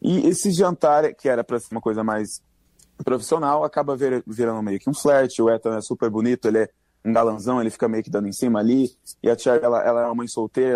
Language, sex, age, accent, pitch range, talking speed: Portuguese, male, 20-39, Brazilian, 110-140 Hz, 245 wpm